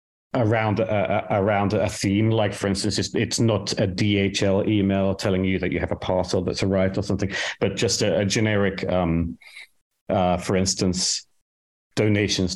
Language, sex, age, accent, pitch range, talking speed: English, male, 40-59, British, 90-110 Hz, 160 wpm